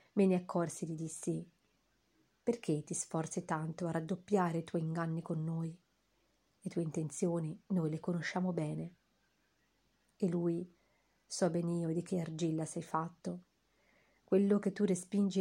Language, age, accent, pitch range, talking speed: Italian, 40-59, native, 165-195 Hz, 150 wpm